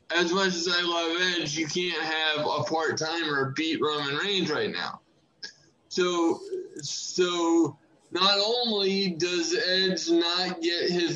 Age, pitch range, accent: 20-39, 155-185 Hz, American